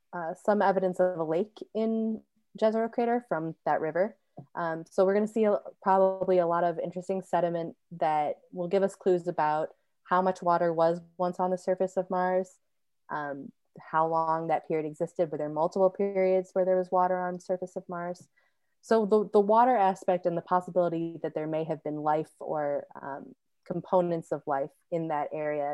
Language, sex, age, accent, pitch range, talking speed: English, female, 20-39, American, 160-190 Hz, 190 wpm